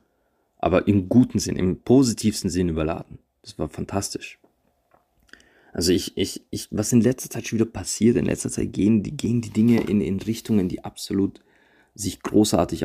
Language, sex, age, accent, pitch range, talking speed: German, male, 30-49, German, 95-115 Hz, 170 wpm